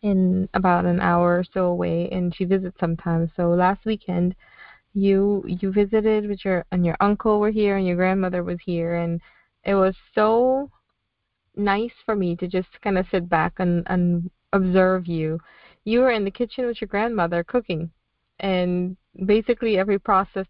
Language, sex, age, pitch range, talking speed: English, female, 20-39, 170-200 Hz, 175 wpm